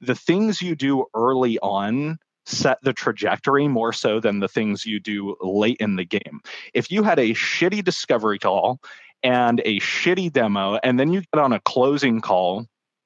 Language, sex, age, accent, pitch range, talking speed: English, male, 20-39, American, 115-150 Hz, 180 wpm